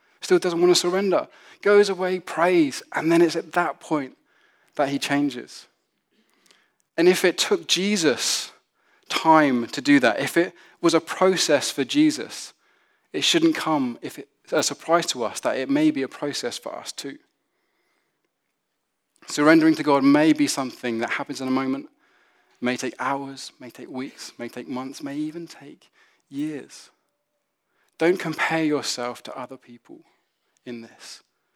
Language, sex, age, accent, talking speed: English, male, 20-39, British, 155 wpm